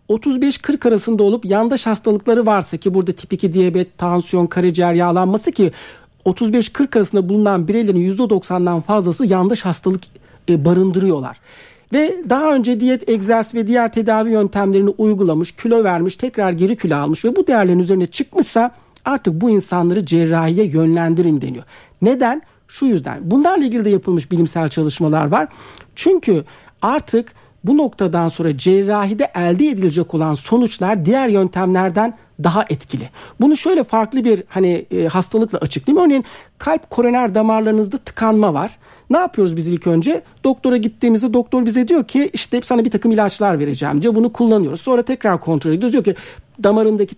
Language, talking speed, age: Turkish, 150 wpm, 60-79